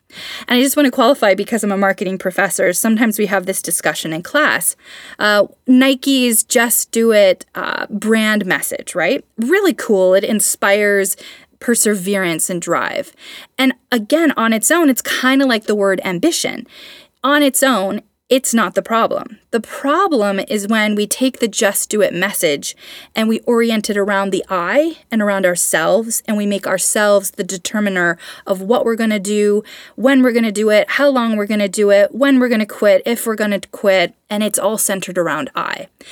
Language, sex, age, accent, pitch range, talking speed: English, female, 20-39, American, 195-240 Hz, 185 wpm